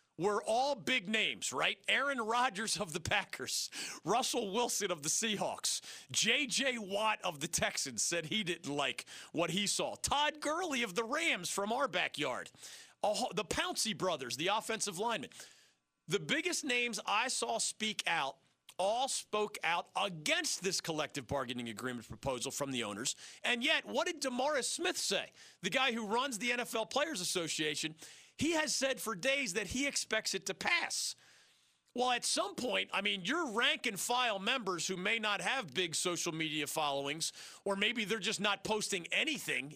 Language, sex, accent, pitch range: English, male, American, 185-255 Hz